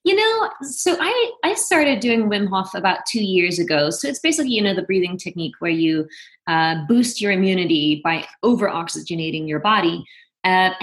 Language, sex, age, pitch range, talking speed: English, female, 20-39, 175-230 Hz, 175 wpm